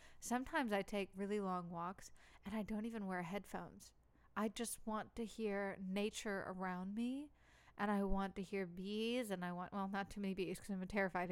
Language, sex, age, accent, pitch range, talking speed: English, female, 20-39, American, 190-230 Hz, 195 wpm